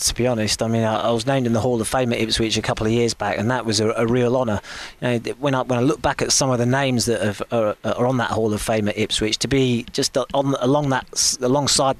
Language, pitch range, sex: English, 115-130 Hz, male